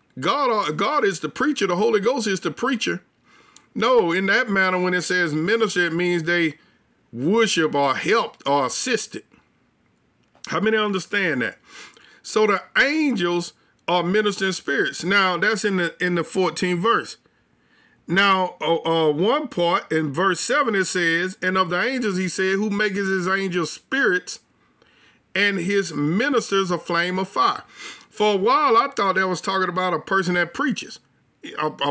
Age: 50-69